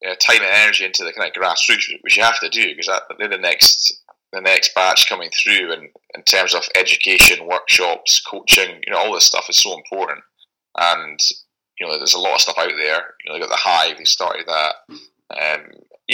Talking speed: 225 wpm